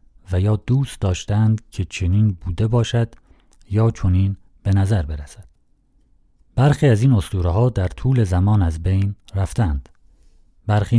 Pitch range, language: 90-120 Hz, Persian